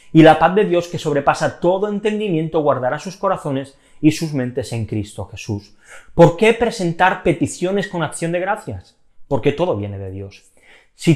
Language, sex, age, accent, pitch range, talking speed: Spanish, male, 30-49, Spanish, 120-170 Hz, 170 wpm